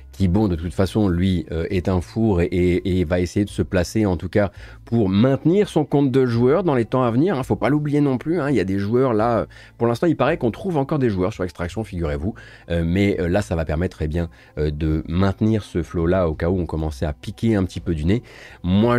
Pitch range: 85-110 Hz